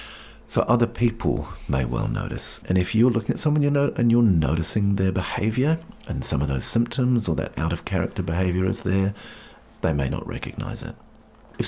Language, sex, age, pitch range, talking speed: English, male, 50-69, 80-120 Hz, 195 wpm